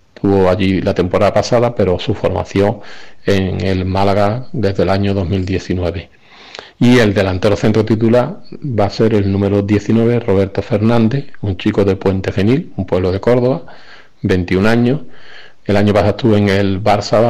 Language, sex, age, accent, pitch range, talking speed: Spanish, male, 40-59, Spanish, 95-115 Hz, 160 wpm